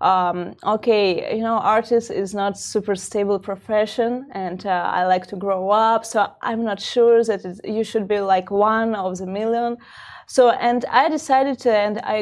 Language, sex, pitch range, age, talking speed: Arabic, female, 200-235 Hz, 20-39, 180 wpm